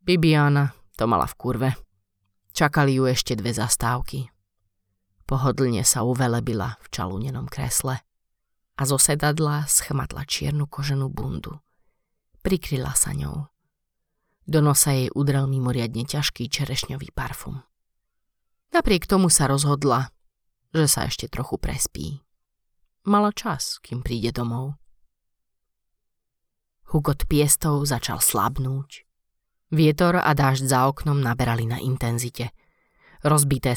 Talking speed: 105 wpm